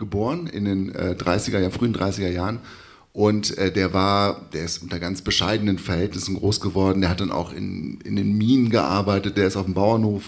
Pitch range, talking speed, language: 95-120 Hz, 200 wpm, German